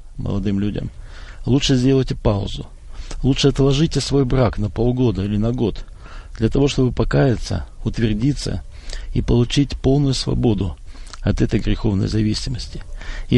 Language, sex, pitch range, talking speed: Russian, male, 100-125 Hz, 125 wpm